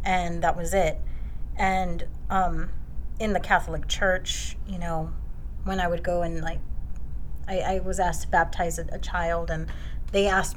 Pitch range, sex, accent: 165-200 Hz, female, American